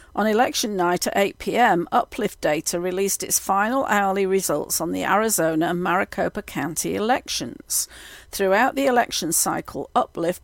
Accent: British